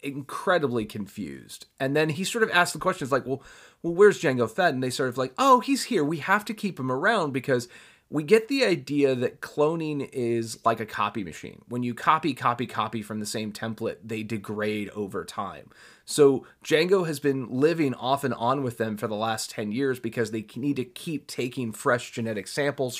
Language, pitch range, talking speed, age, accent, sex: English, 115-155 Hz, 205 wpm, 30-49, American, male